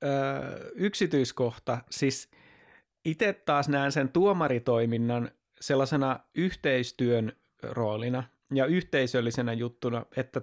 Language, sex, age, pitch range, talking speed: Finnish, male, 30-49, 125-155 Hz, 80 wpm